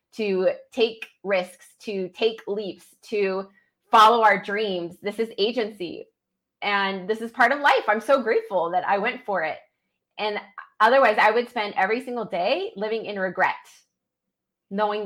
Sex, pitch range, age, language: female, 190-270 Hz, 20-39, English